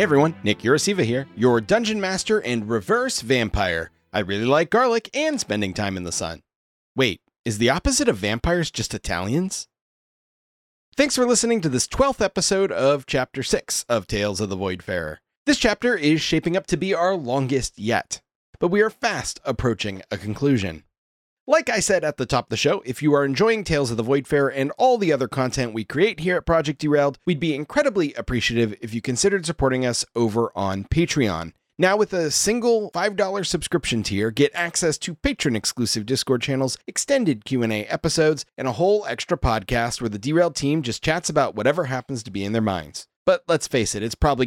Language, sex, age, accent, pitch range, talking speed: English, male, 30-49, American, 115-180 Hz, 190 wpm